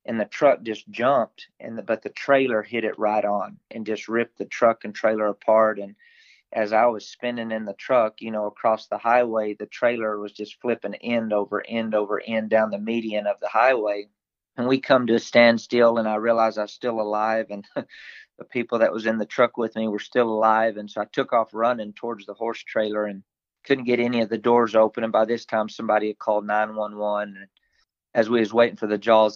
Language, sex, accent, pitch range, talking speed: English, male, American, 105-115 Hz, 225 wpm